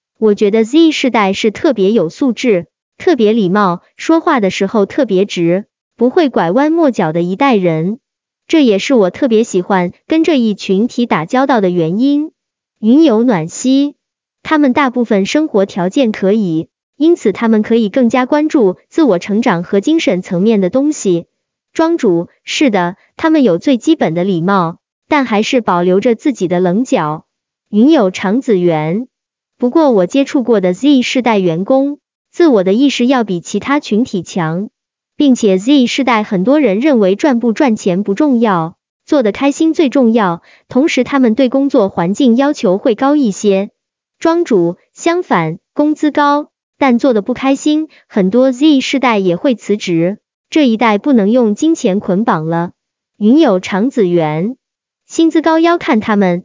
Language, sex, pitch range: Chinese, male, 195-280 Hz